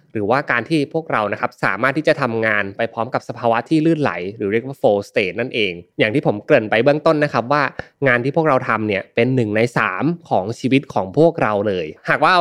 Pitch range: 110-150 Hz